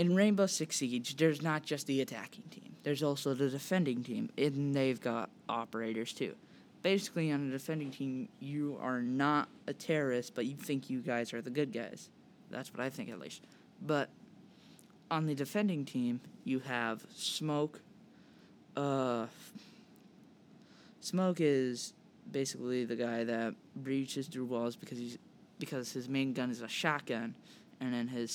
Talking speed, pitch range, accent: 160 wpm, 125-165 Hz, American